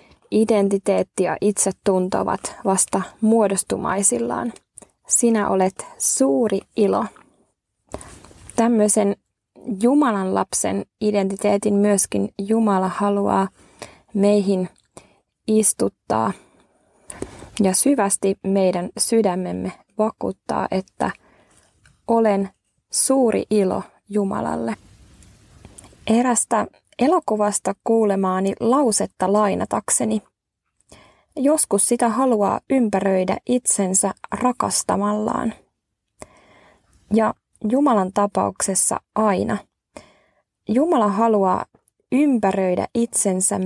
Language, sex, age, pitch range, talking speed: Finnish, female, 20-39, 195-230 Hz, 65 wpm